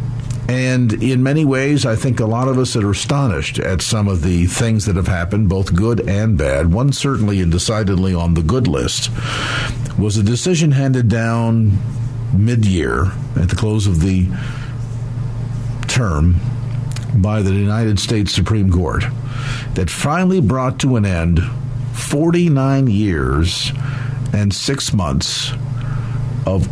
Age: 50-69